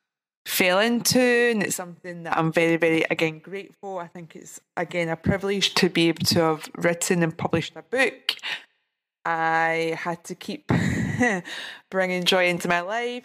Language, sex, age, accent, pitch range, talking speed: English, female, 20-39, British, 160-190 Hz, 165 wpm